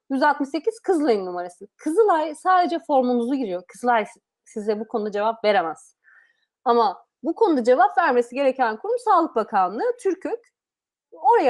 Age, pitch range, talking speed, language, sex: 30-49, 215-310 Hz, 125 wpm, Turkish, female